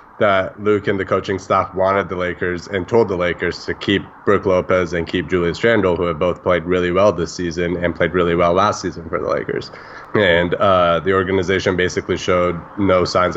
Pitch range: 85-95 Hz